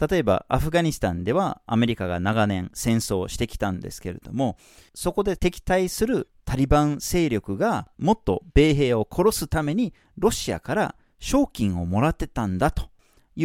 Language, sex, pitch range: Japanese, male, 105-165 Hz